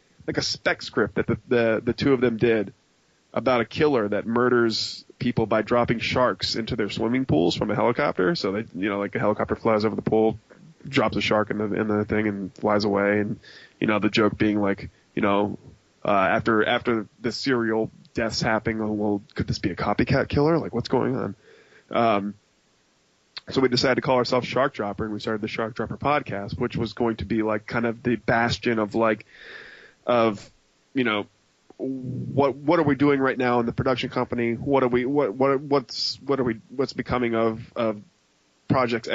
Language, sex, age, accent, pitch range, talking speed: English, male, 20-39, American, 105-125 Hz, 205 wpm